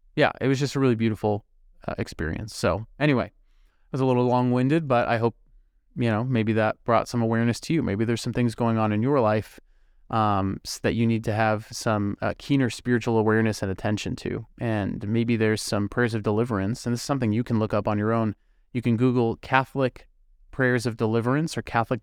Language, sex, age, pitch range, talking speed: English, male, 20-39, 105-125 Hz, 210 wpm